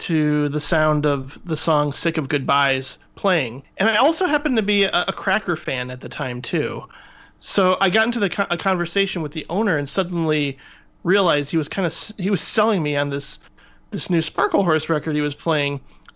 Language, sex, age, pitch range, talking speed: English, male, 30-49, 145-180 Hz, 200 wpm